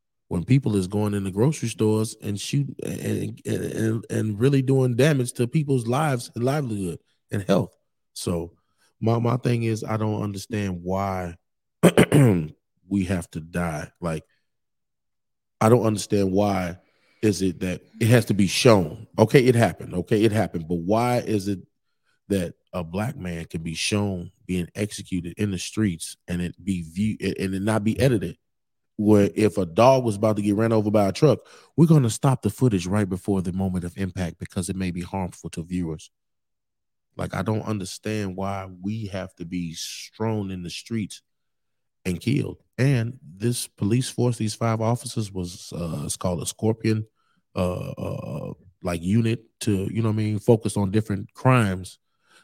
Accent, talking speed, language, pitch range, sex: American, 175 wpm, English, 95-115 Hz, male